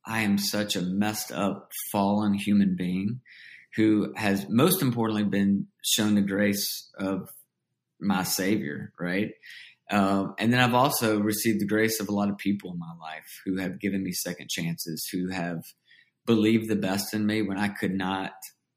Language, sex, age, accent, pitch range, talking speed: English, male, 30-49, American, 95-110 Hz, 175 wpm